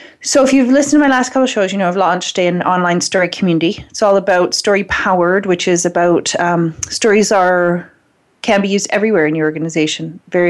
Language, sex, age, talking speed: English, female, 30-49, 210 wpm